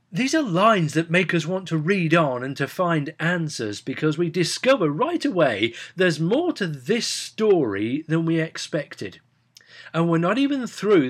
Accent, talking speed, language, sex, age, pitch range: British, 175 wpm, English, male, 40-59, 135-195 Hz